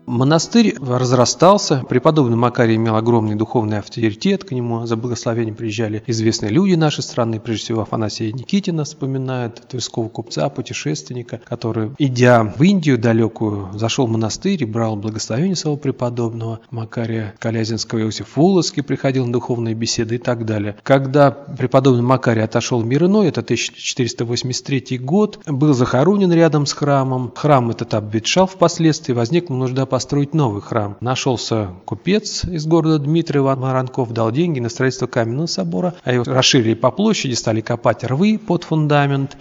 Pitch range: 115-145 Hz